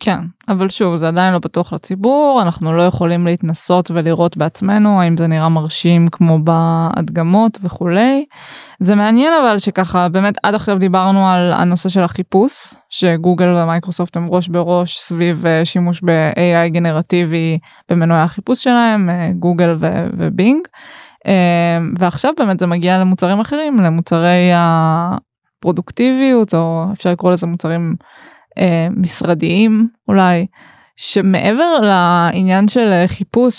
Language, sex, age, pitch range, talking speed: Hebrew, female, 20-39, 175-205 Hz, 120 wpm